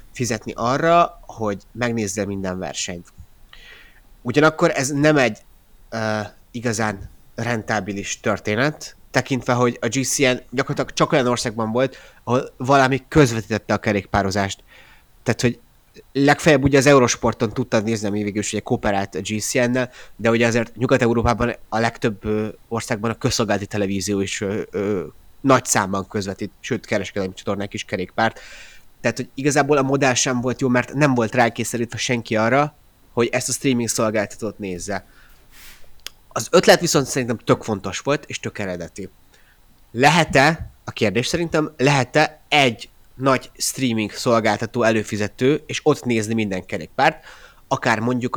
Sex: male